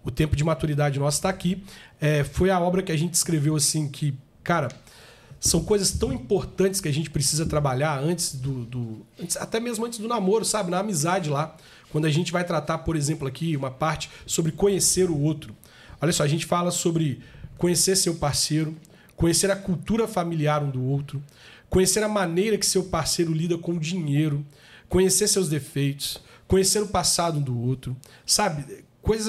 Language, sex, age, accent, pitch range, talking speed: Portuguese, male, 40-59, Brazilian, 145-190 Hz, 185 wpm